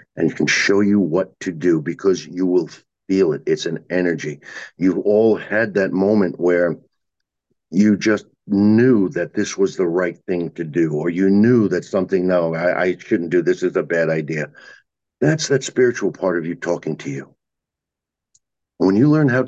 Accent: American